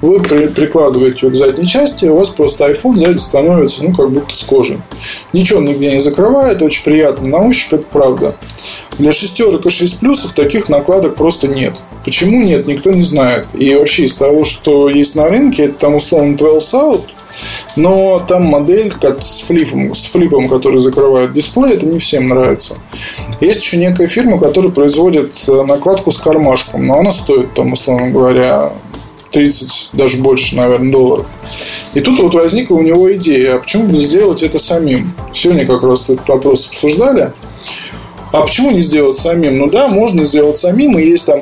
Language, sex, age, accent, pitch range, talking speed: Russian, male, 20-39, native, 135-175 Hz, 175 wpm